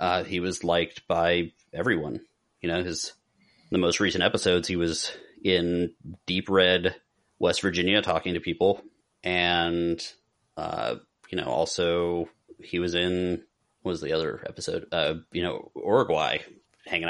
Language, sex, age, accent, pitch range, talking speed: English, male, 30-49, American, 85-100 Hz, 145 wpm